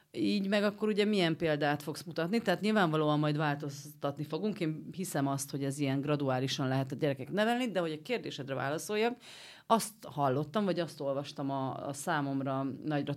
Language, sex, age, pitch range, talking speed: Hungarian, female, 40-59, 140-195 Hz, 175 wpm